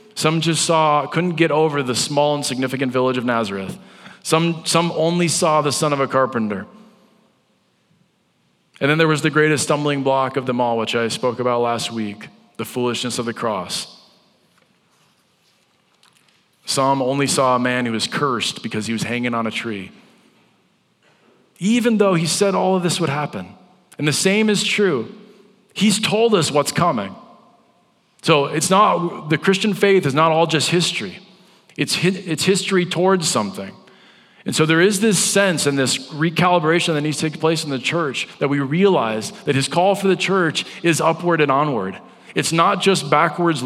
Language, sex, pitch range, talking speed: English, male, 135-180 Hz, 175 wpm